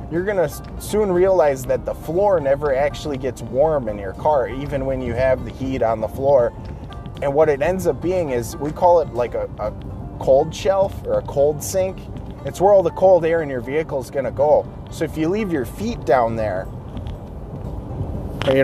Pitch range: 115-155 Hz